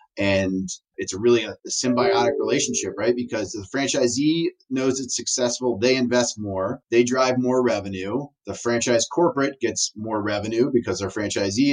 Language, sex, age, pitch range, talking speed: English, male, 30-49, 95-125 Hz, 155 wpm